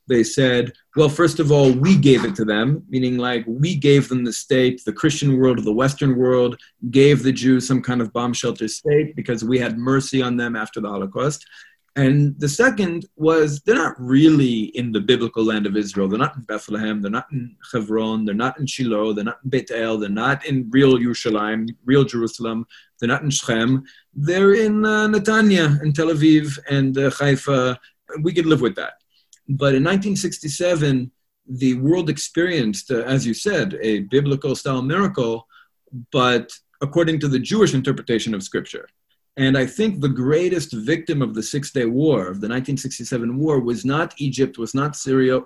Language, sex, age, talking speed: English, male, 30-49, 185 wpm